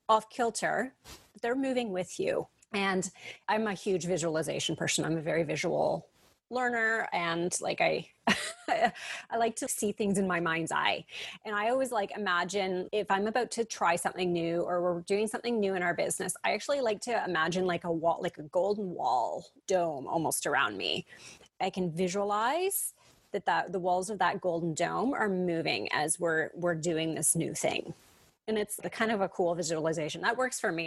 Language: English